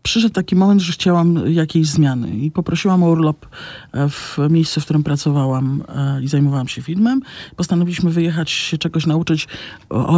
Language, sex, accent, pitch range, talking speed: Polish, male, native, 140-160 Hz, 160 wpm